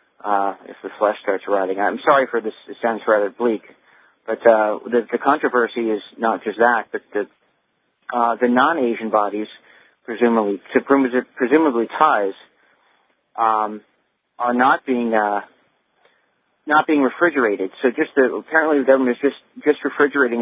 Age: 40-59